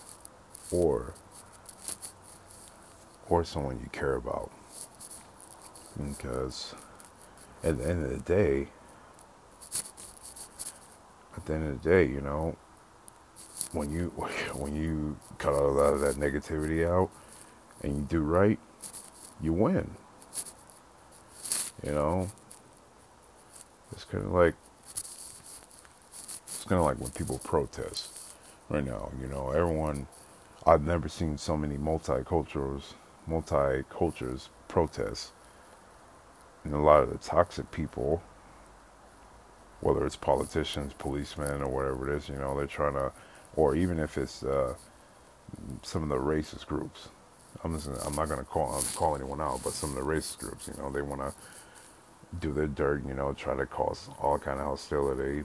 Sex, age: male, 50-69